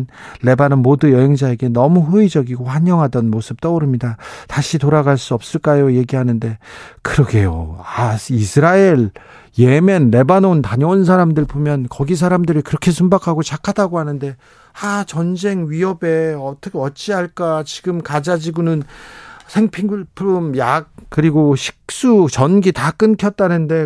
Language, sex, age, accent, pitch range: Korean, male, 40-59, native, 135-175 Hz